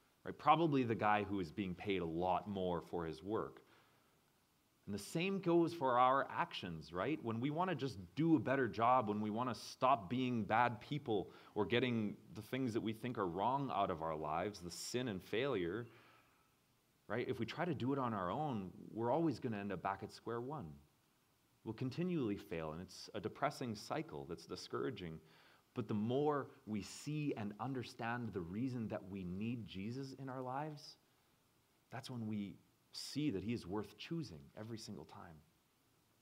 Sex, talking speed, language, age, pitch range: male, 190 wpm, English, 30-49, 100-135 Hz